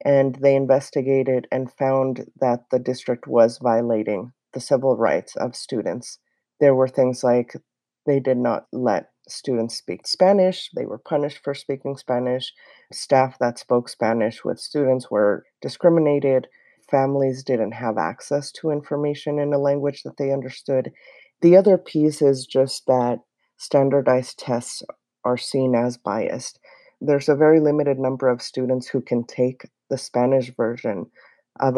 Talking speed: 145 wpm